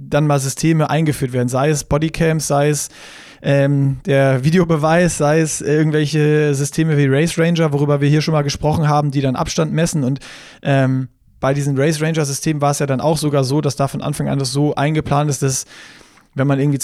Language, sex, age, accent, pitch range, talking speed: German, male, 20-39, German, 140-160 Hz, 205 wpm